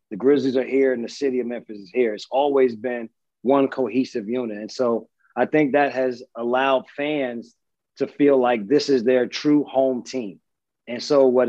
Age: 30-49